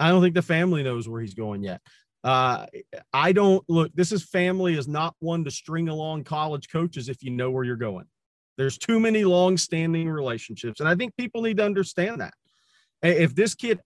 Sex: male